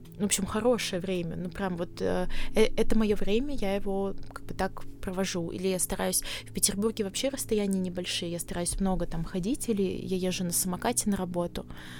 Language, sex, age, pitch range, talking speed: Russian, female, 20-39, 175-205 Hz, 185 wpm